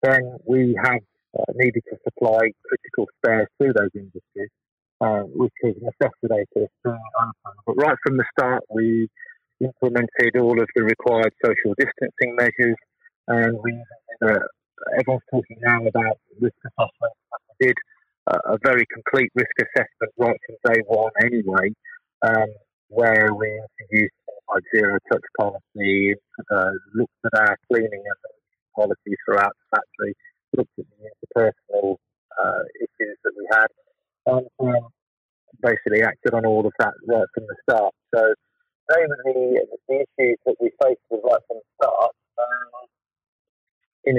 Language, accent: English, British